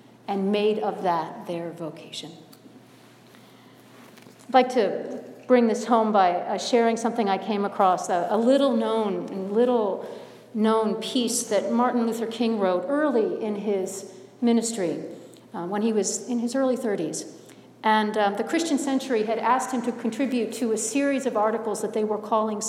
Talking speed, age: 160 wpm, 50-69